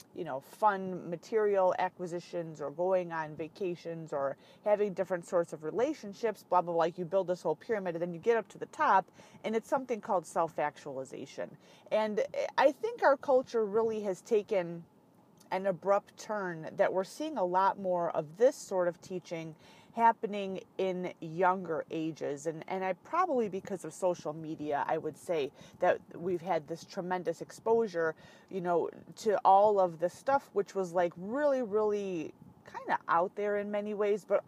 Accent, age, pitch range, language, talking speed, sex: American, 30-49, 170-220 Hz, English, 175 wpm, female